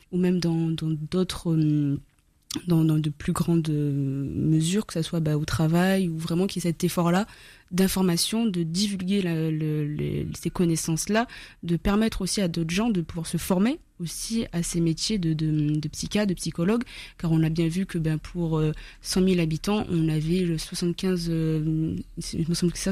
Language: French